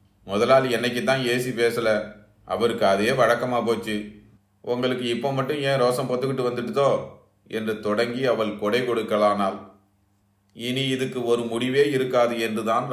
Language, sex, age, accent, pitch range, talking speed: Tamil, male, 30-49, native, 100-120 Hz, 120 wpm